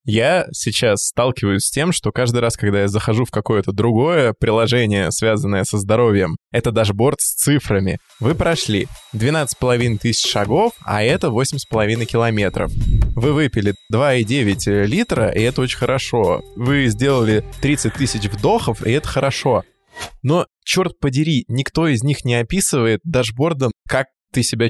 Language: Russian